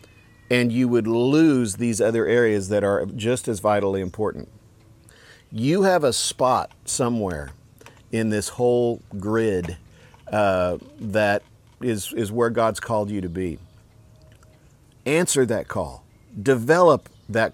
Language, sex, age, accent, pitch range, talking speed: English, male, 50-69, American, 110-135 Hz, 125 wpm